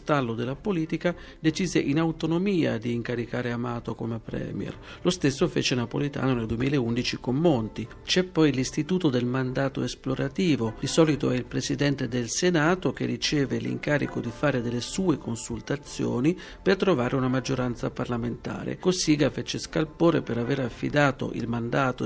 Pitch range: 120-160 Hz